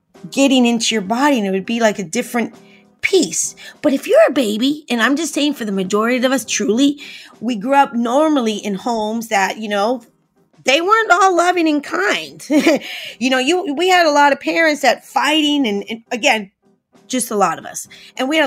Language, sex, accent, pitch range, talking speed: English, female, American, 215-295 Hz, 210 wpm